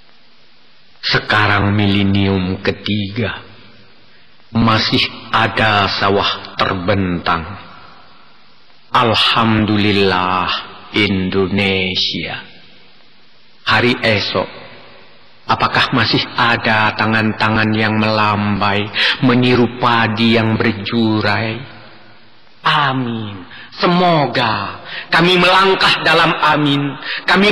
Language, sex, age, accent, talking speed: Indonesian, male, 40-59, native, 60 wpm